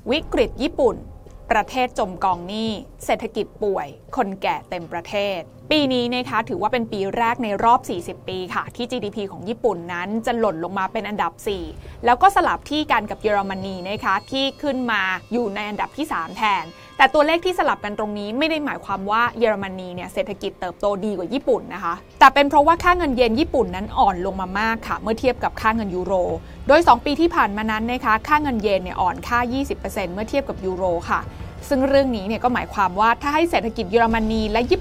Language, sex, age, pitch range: Thai, female, 20-39, 200-280 Hz